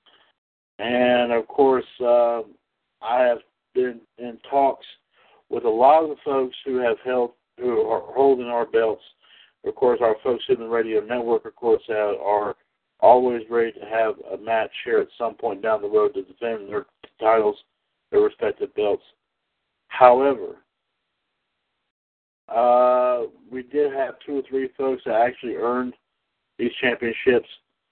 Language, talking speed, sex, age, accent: English, 145 wpm, male, 60-79, American